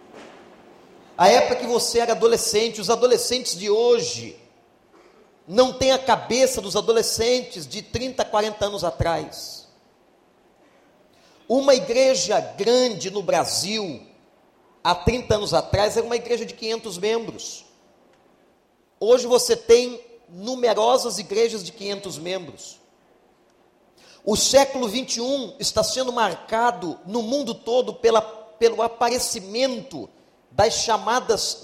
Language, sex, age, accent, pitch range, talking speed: Portuguese, male, 40-59, Brazilian, 210-255 Hz, 110 wpm